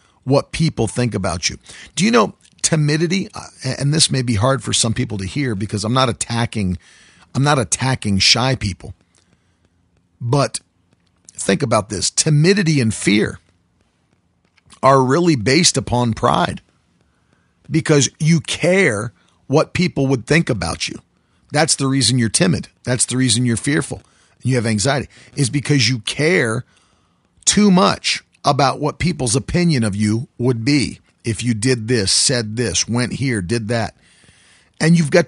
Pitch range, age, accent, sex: 110-145 Hz, 50-69, American, male